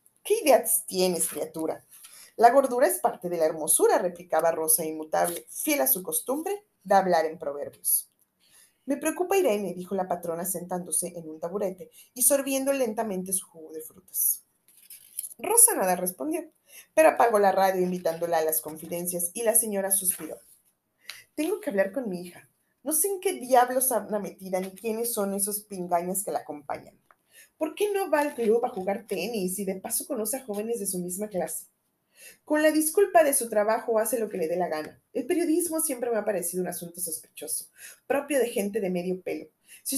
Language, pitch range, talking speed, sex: Spanish, 180-260 Hz, 185 wpm, female